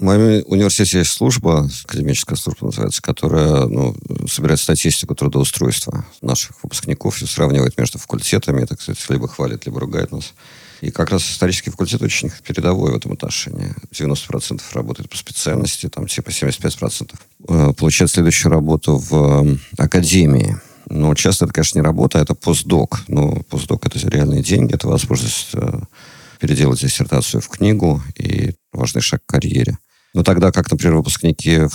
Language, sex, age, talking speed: Russian, male, 50-69, 145 wpm